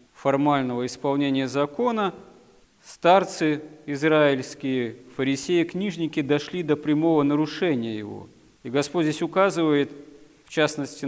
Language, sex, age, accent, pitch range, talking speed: Russian, male, 40-59, native, 135-160 Hz, 95 wpm